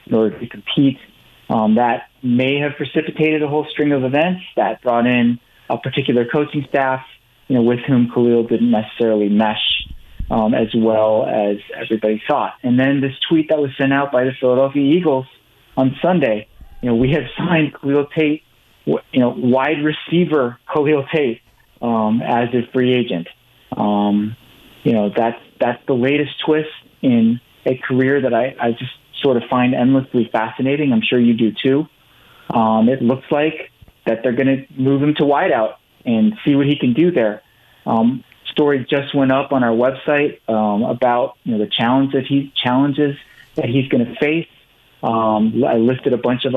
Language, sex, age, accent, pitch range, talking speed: English, male, 30-49, American, 115-140 Hz, 180 wpm